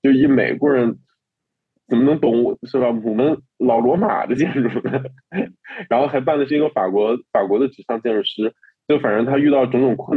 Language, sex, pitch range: Chinese, male, 120-150 Hz